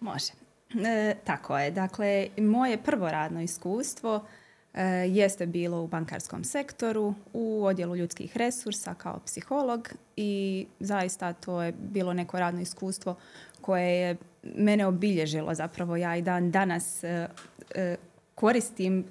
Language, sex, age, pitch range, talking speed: Croatian, female, 20-39, 175-200 Hz, 130 wpm